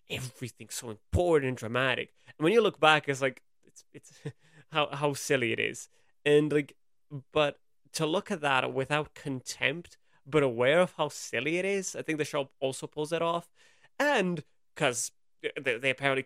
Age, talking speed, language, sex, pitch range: 20-39, 175 wpm, English, male, 125-155 Hz